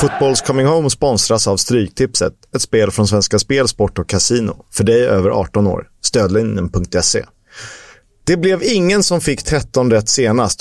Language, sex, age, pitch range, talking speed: Swedish, male, 30-49, 100-130 Hz, 165 wpm